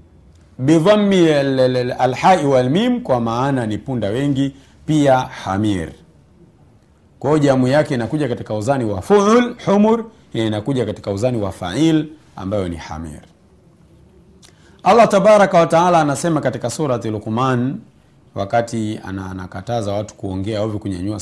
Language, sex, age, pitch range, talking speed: Swahili, male, 40-59, 100-150 Hz, 115 wpm